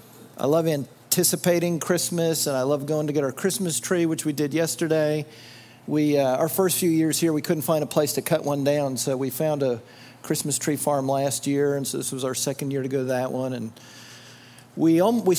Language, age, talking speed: English, 40-59, 220 wpm